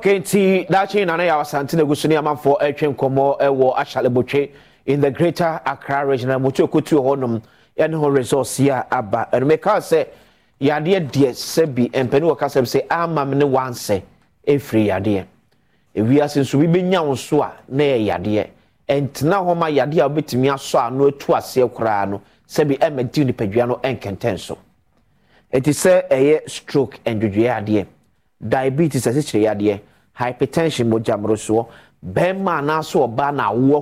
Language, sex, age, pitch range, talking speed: English, male, 30-49, 120-150 Hz, 175 wpm